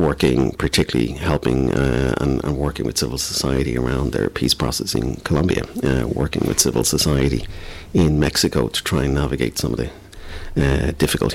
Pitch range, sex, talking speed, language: 70-90 Hz, male, 170 wpm, English